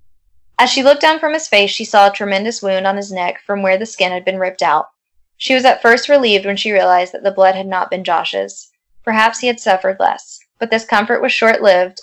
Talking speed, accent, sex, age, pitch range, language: 240 wpm, American, female, 10-29, 190-225 Hz, English